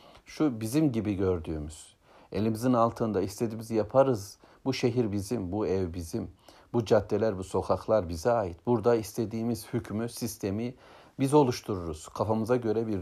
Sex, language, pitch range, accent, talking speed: male, Turkish, 100-120 Hz, native, 135 wpm